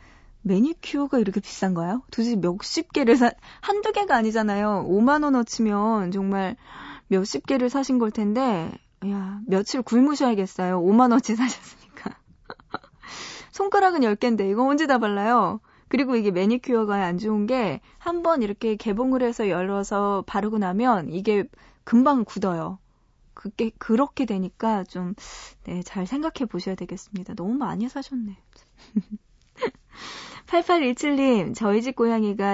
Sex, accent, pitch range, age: female, native, 195-255 Hz, 20-39